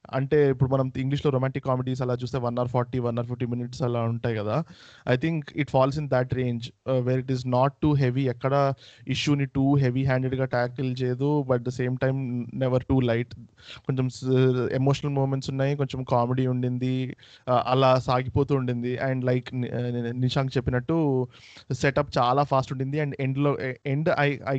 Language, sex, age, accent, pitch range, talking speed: Telugu, male, 20-39, native, 120-140 Hz, 165 wpm